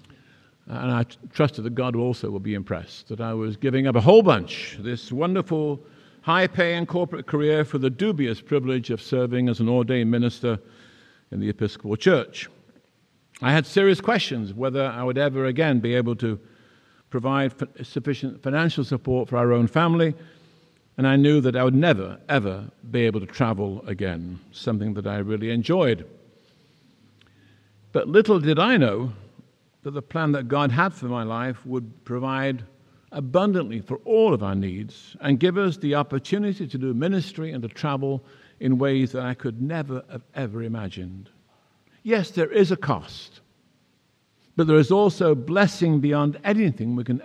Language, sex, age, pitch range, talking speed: English, male, 50-69, 115-150 Hz, 165 wpm